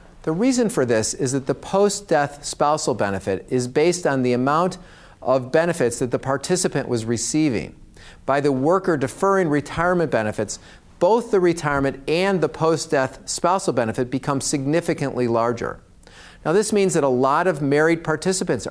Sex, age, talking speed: male, 50-69, 155 wpm